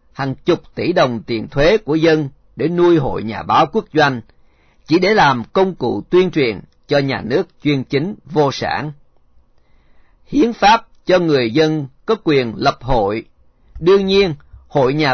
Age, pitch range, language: 40-59, 130-185 Hz, Vietnamese